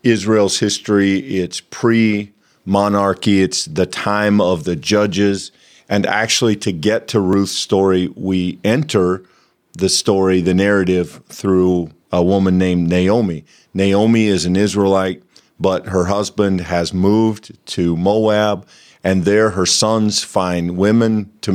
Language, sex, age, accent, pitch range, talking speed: English, male, 50-69, American, 95-110 Hz, 130 wpm